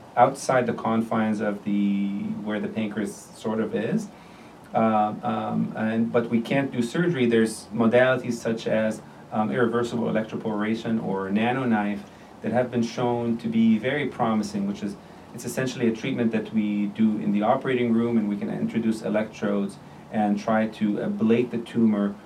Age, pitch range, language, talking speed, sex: 30-49, 110-120 Hz, English, 165 wpm, male